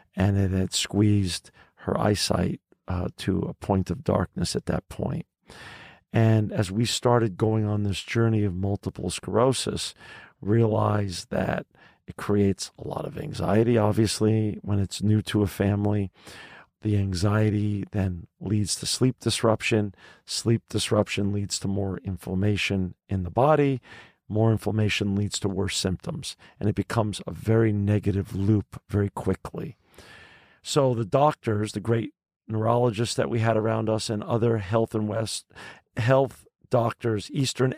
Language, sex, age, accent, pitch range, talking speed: English, male, 50-69, American, 100-115 Hz, 145 wpm